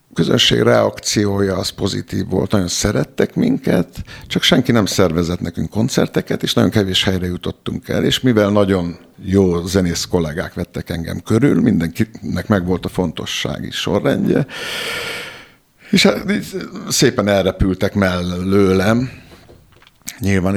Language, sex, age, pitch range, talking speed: Hungarian, male, 60-79, 90-110 Hz, 125 wpm